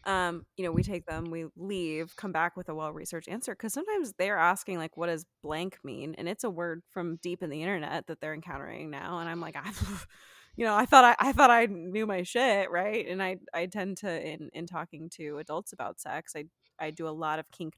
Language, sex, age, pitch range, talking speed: English, female, 20-39, 165-200 Hz, 245 wpm